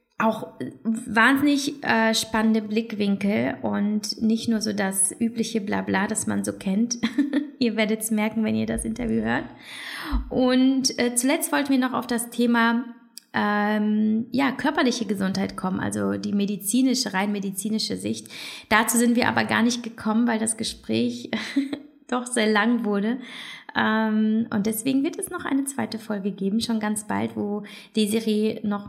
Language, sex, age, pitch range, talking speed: German, female, 20-39, 200-235 Hz, 150 wpm